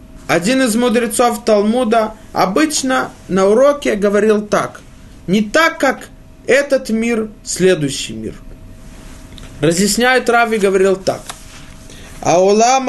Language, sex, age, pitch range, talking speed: Russian, male, 20-39, 150-215 Hz, 100 wpm